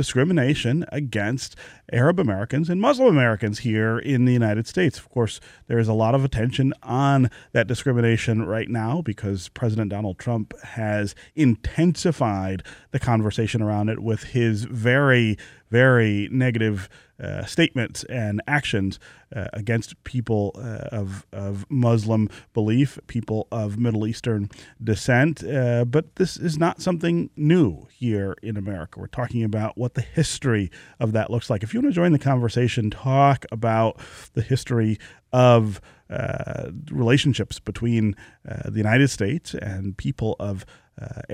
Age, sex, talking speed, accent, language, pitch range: 30-49, male, 145 wpm, American, English, 105-130 Hz